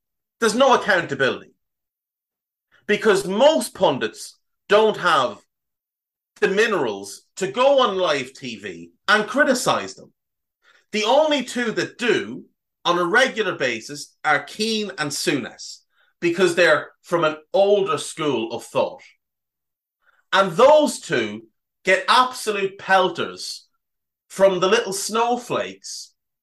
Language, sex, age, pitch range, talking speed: English, male, 30-49, 150-230 Hz, 110 wpm